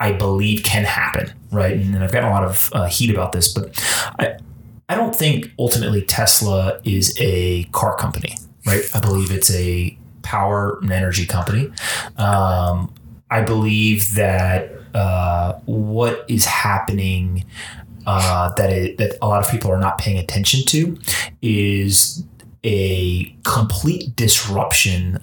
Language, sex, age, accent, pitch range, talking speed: English, male, 30-49, American, 95-115 Hz, 145 wpm